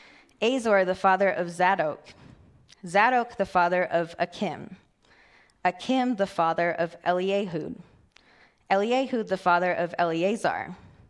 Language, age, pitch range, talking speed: English, 20-39, 170-210 Hz, 110 wpm